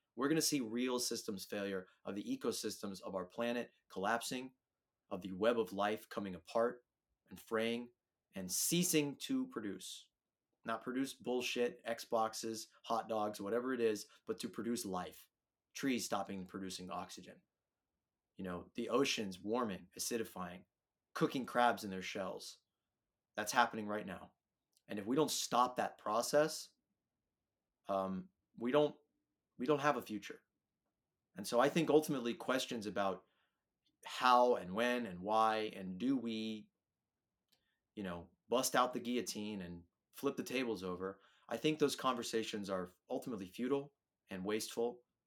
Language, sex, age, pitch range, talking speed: English, male, 30-49, 100-125 Hz, 145 wpm